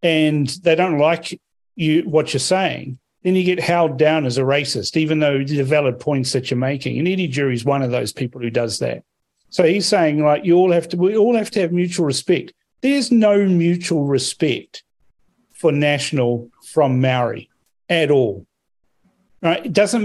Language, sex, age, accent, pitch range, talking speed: English, male, 40-59, Australian, 135-170 Hz, 185 wpm